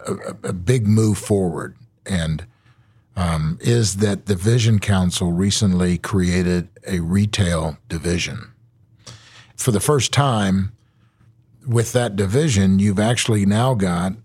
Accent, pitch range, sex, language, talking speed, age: American, 95-120 Hz, male, English, 120 wpm, 50-69